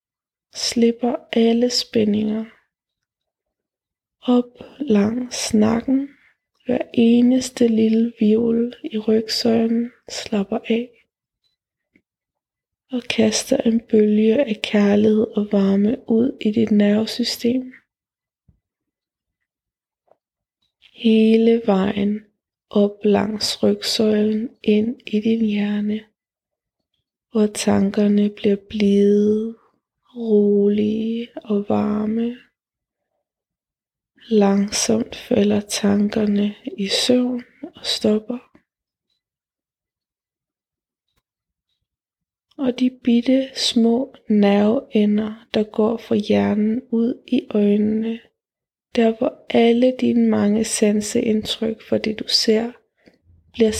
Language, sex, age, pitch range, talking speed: Danish, female, 20-39, 210-240 Hz, 80 wpm